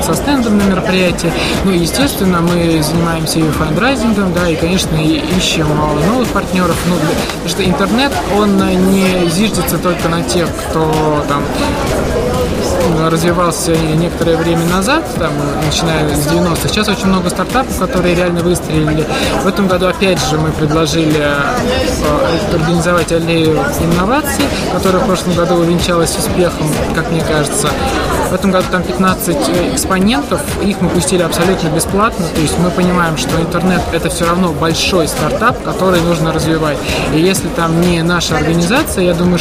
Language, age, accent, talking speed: Russian, 20-39, native, 145 wpm